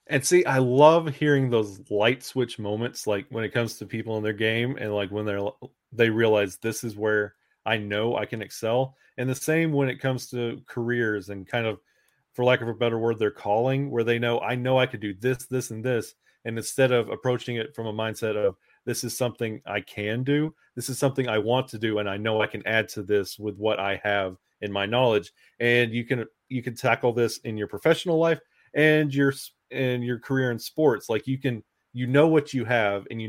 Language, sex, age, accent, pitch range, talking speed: English, male, 30-49, American, 110-130 Hz, 230 wpm